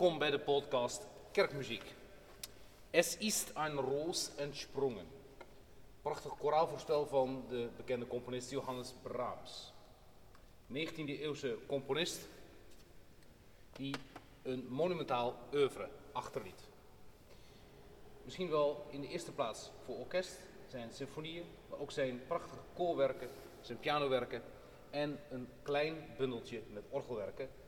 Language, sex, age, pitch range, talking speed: Dutch, male, 40-59, 120-150 Hz, 105 wpm